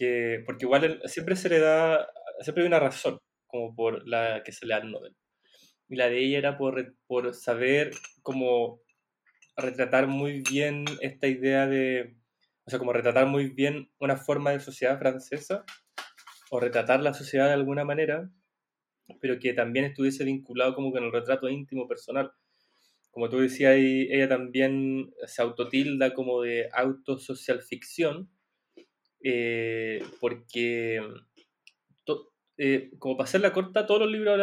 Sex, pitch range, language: male, 130-165 Hz, Spanish